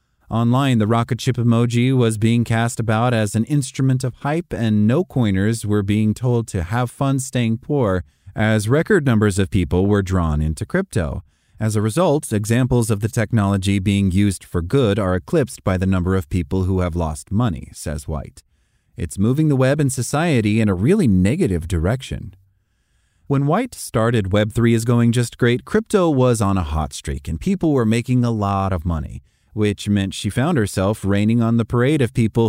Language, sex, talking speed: English, male, 185 wpm